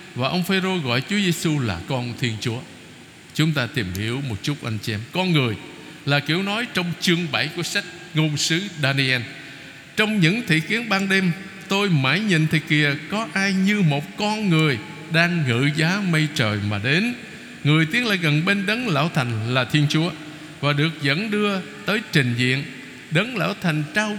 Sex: male